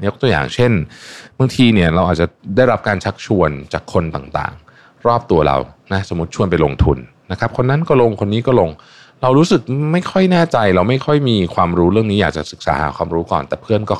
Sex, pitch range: male, 80-120 Hz